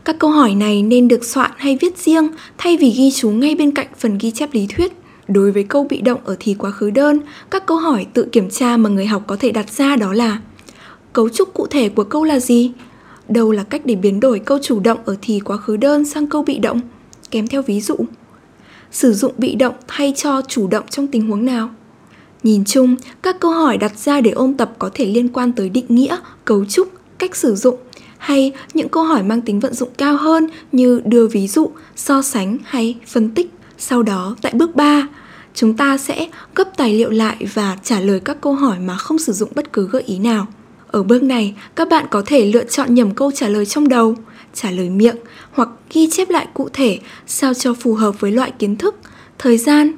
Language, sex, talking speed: Vietnamese, female, 230 wpm